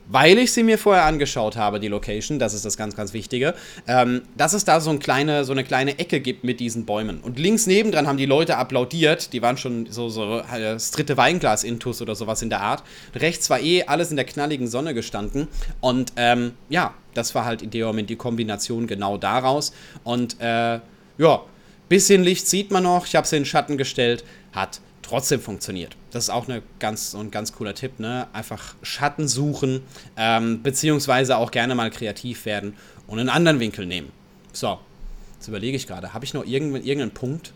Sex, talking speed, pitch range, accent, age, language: male, 205 wpm, 110-145 Hz, German, 30-49, German